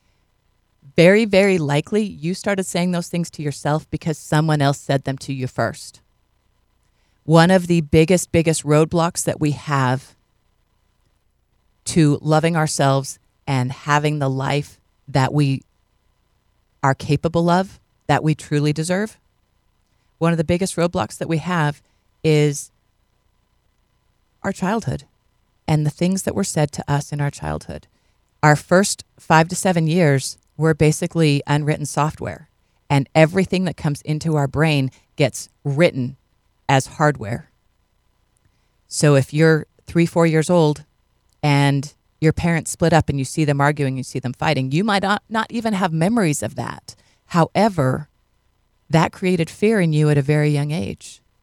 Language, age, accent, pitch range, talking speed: English, 40-59, American, 130-165 Hz, 150 wpm